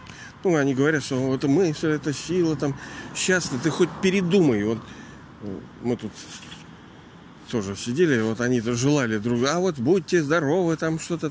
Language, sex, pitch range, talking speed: Russian, male, 115-150 Hz, 150 wpm